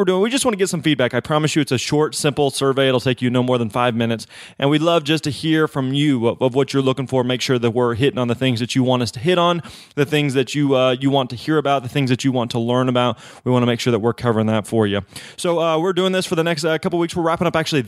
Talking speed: 330 wpm